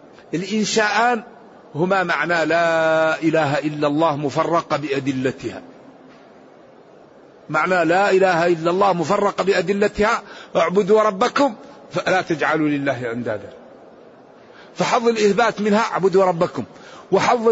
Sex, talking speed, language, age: male, 95 wpm, Arabic, 50-69